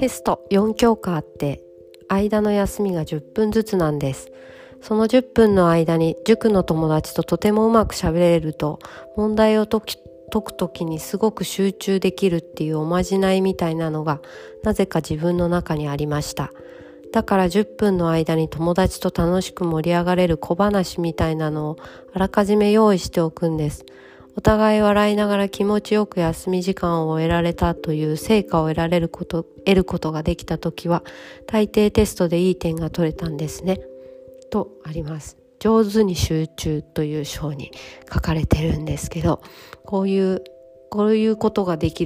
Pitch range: 155-200 Hz